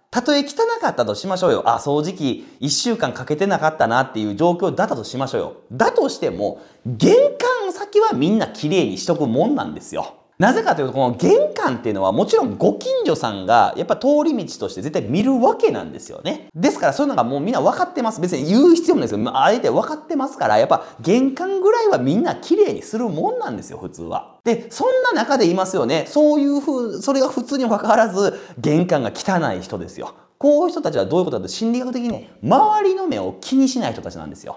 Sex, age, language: male, 30-49, Japanese